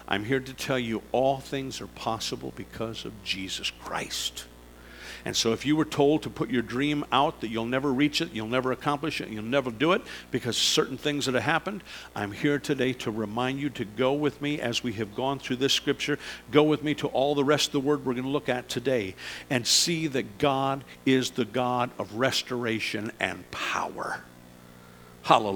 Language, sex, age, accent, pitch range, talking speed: English, male, 50-69, American, 105-150 Hz, 205 wpm